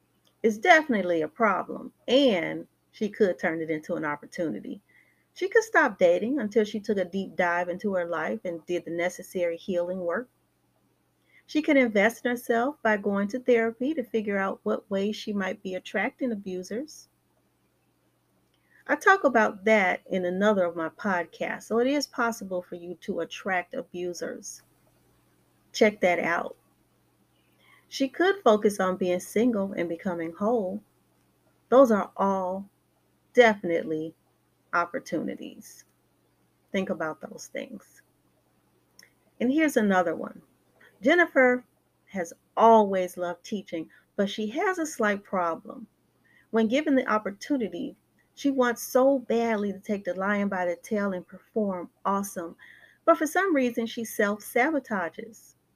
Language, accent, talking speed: English, American, 140 wpm